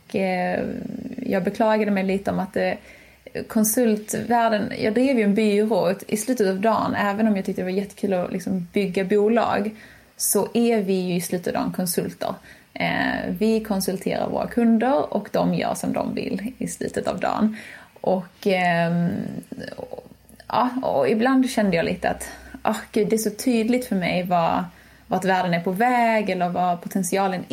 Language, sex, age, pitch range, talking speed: English, female, 20-39, 185-225 Hz, 155 wpm